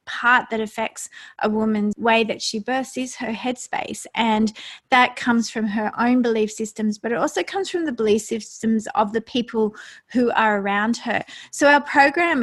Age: 30-49